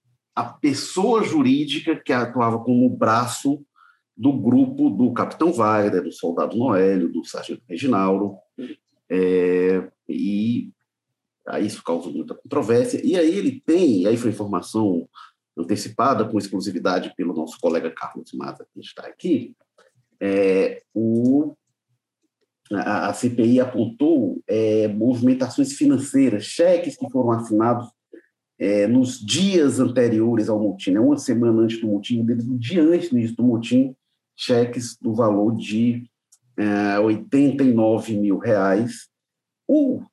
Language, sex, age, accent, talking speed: Portuguese, male, 50-69, Brazilian, 125 wpm